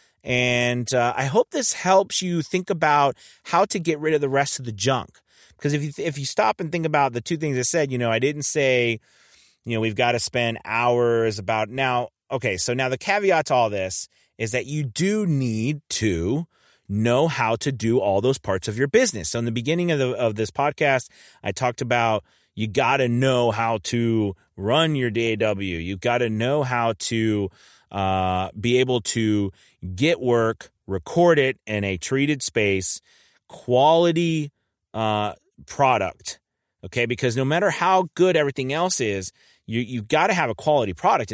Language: English